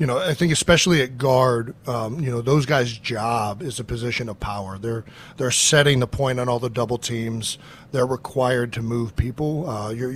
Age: 40-59